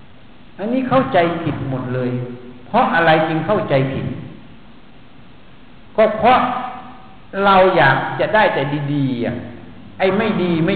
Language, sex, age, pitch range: Thai, male, 60-79, 135-185 Hz